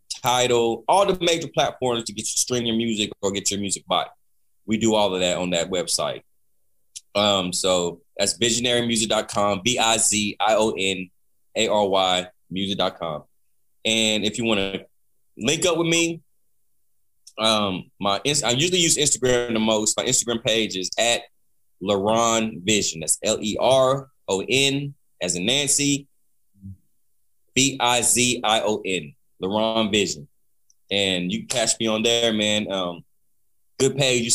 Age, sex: 20-39, male